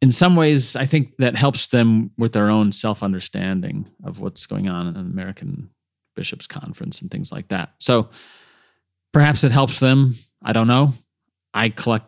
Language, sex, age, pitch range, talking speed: English, male, 30-49, 95-150 Hz, 175 wpm